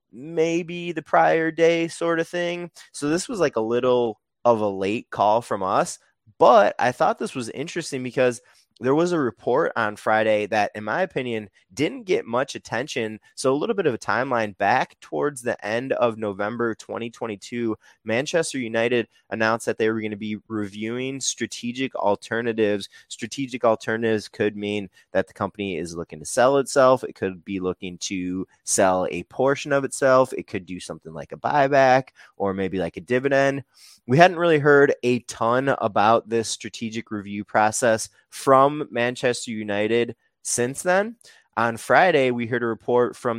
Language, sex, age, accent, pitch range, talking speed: English, male, 20-39, American, 105-130 Hz, 170 wpm